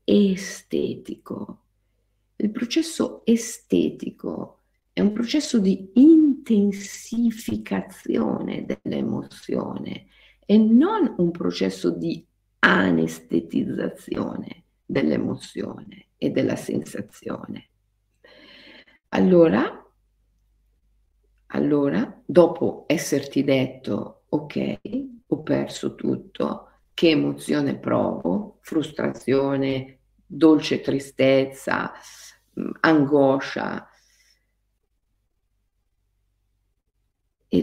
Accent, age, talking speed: native, 50-69, 60 wpm